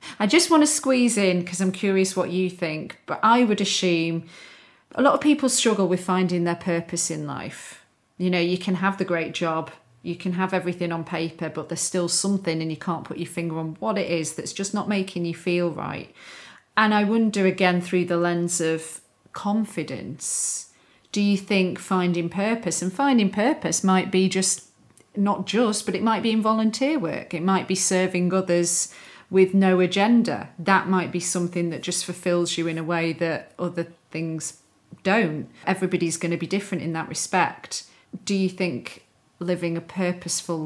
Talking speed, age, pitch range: 190 wpm, 40-59, 165-190 Hz